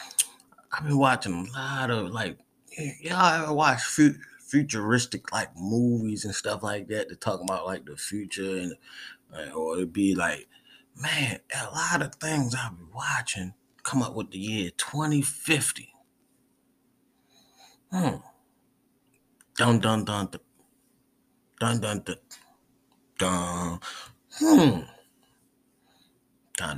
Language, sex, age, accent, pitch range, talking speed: English, male, 30-49, American, 100-145 Hz, 120 wpm